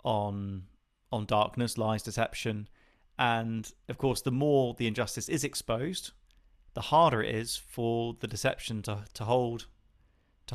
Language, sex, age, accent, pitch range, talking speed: English, male, 30-49, British, 105-135 Hz, 140 wpm